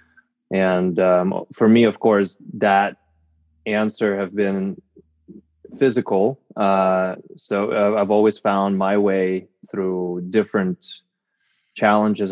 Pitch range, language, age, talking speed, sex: 90-110 Hz, English, 20-39, 100 wpm, male